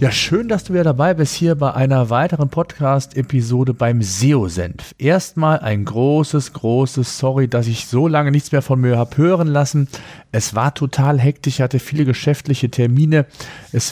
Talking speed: 170 wpm